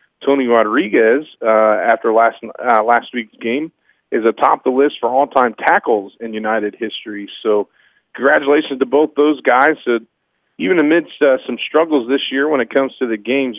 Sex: male